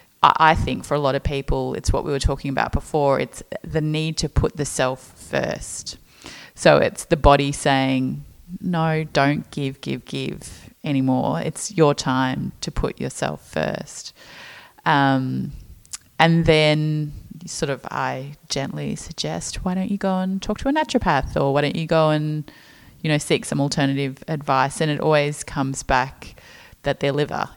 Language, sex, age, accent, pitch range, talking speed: English, female, 30-49, Australian, 135-160 Hz, 170 wpm